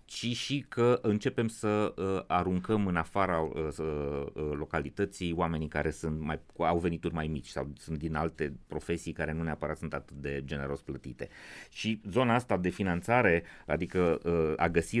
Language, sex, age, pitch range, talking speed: Romanian, male, 30-49, 80-105 Hz, 150 wpm